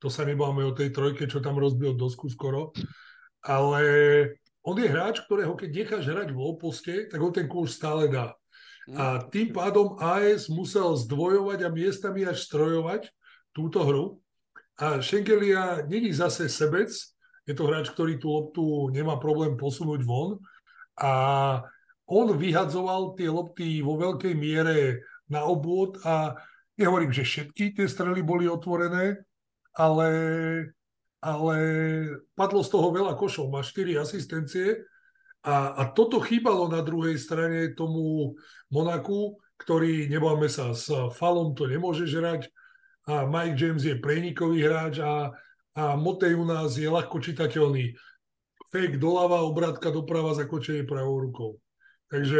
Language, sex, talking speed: Slovak, male, 140 wpm